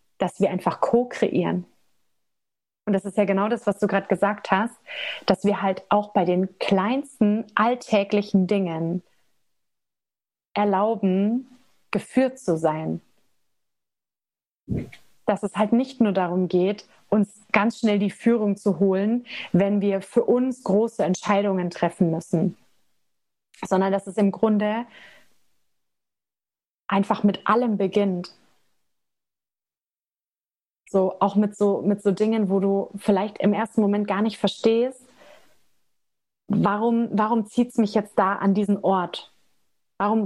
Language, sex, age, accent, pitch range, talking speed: German, female, 30-49, German, 195-225 Hz, 130 wpm